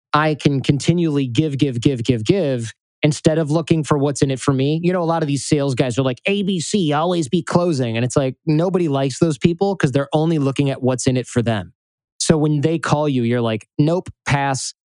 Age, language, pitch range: 20-39, English, 135-165 Hz